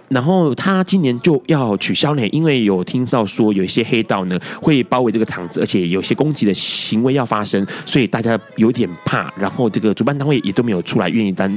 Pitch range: 110-160 Hz